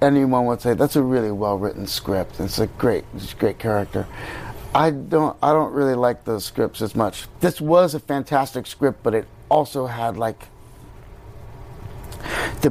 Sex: male